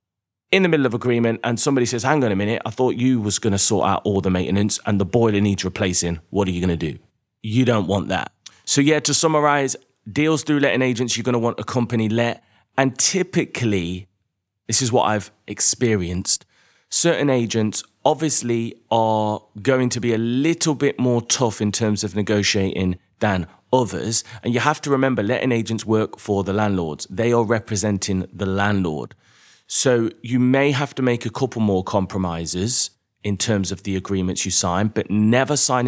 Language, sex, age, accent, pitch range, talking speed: English, male, 30-49, British, 100-125 Hz, 190 wpm